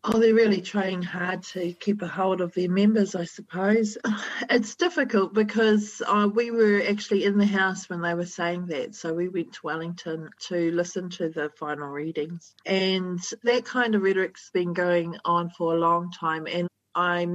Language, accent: English, Australian